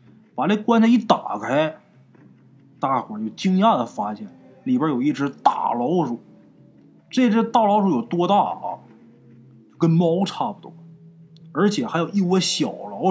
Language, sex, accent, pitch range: Chinese, male, native, 145-225 Hz